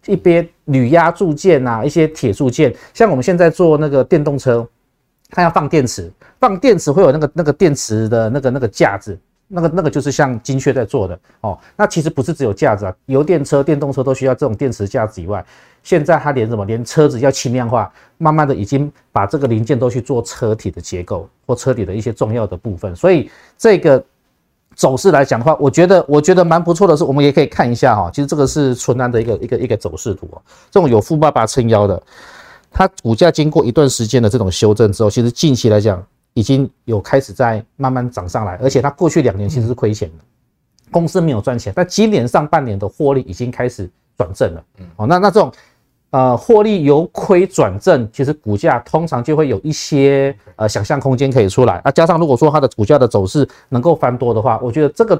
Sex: male